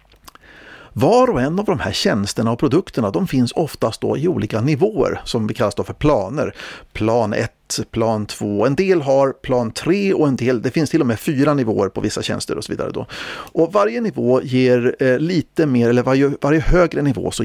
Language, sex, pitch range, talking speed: Swedish, male, 105-140 Hz, 200 wpm